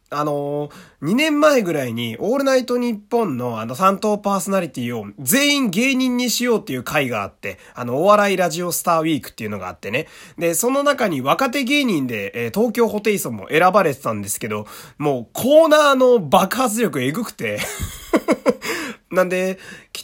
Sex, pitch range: male, 130-205 Hz